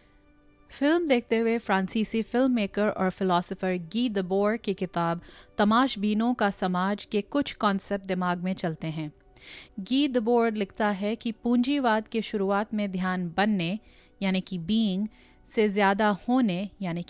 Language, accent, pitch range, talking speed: Hindi, native, 185-230 Hz, 140 wpm